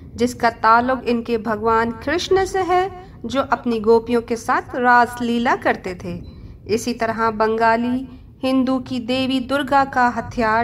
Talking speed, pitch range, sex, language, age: 150 wpm, 225-280 Hz, female, Urdu, 50-69